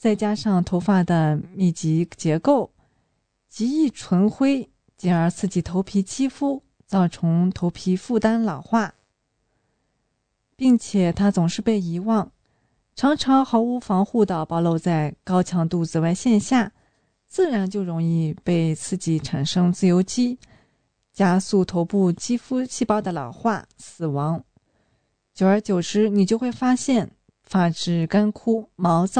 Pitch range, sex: 170-225 Hz, female